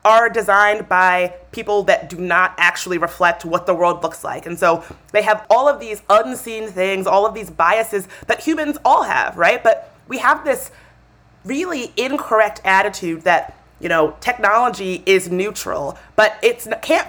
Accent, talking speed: American, 170 wpm